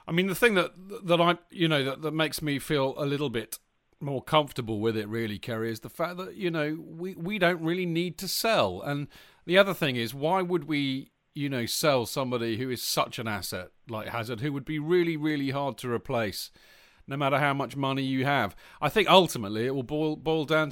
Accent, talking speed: British, 225 wpm